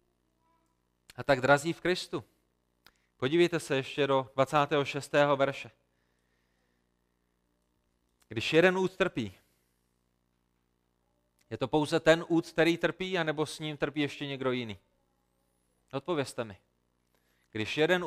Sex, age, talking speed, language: male, 30-49, 110 wpm, Czech